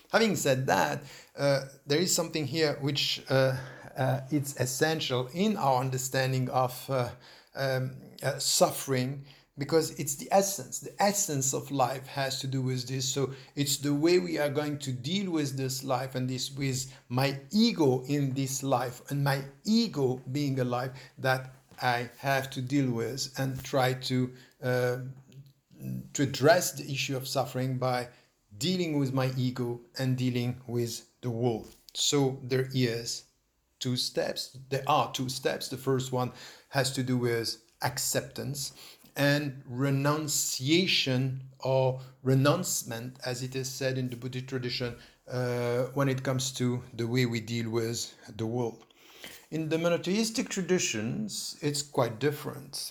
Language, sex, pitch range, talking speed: English, male, 125-145 Hz, 150 wpm